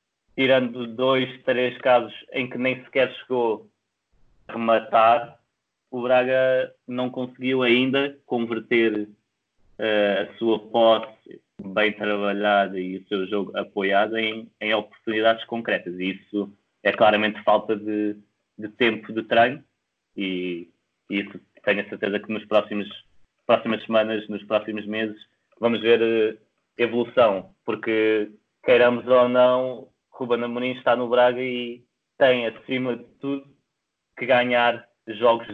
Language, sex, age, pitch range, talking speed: Portuguese, male, 20-39, 105-125 Hz, 130 wpm